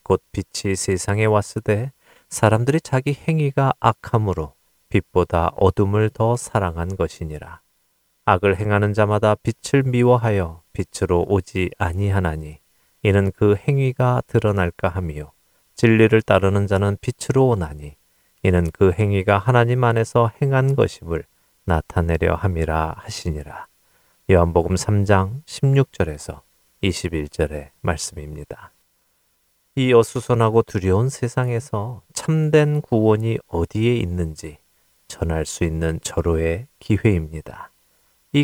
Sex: male